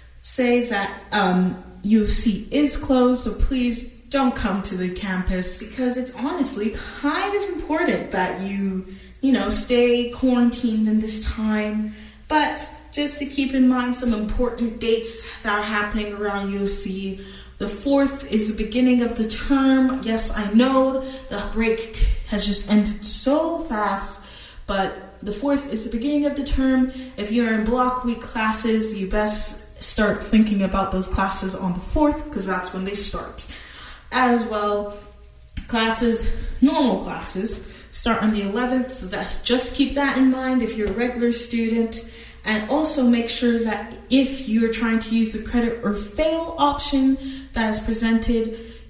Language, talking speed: English, 155 wpm